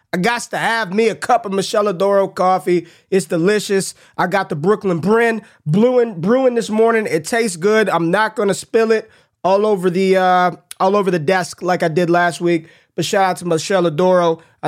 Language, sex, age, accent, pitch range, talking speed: English, male, 20-39, American, 175-220 Hz, 205 wpm